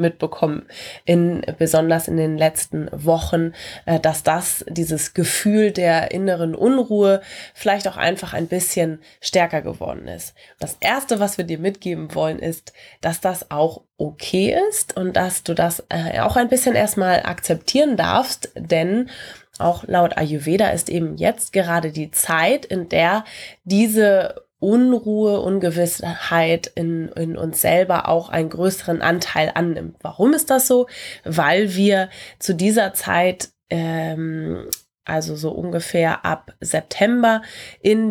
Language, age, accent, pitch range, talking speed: German, 20-39, German, 160-195 Hz, 135 wpm